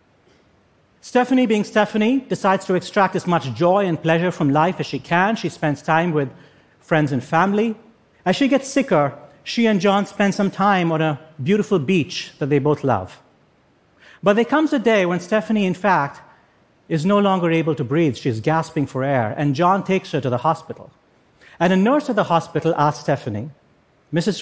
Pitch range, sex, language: 150-210 Hz, male, French